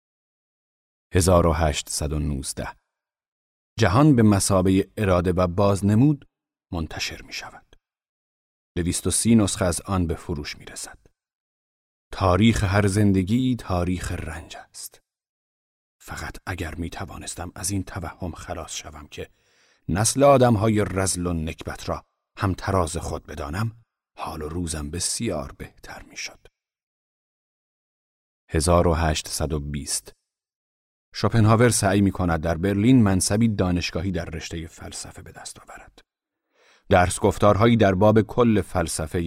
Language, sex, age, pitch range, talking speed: Persian, male, 40-59, 85-105 Hz, 115 wpm